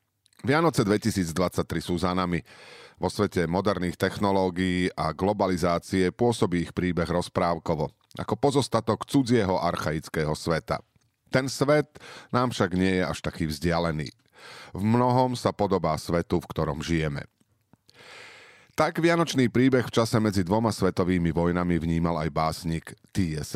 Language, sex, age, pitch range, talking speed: Slovak, male, 40-59, 90-110 Hz, 125 wpm